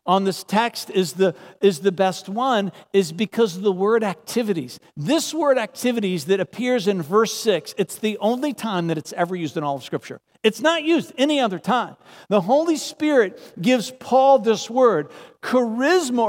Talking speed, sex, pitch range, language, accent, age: 180 wpm, male, 210-270 Hz, English, American, 50-69